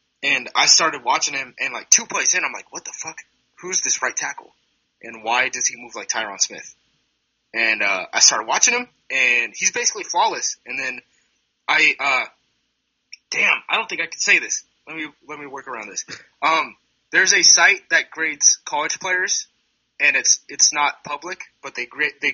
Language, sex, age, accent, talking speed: English, male, 20-39, American, 200 wpm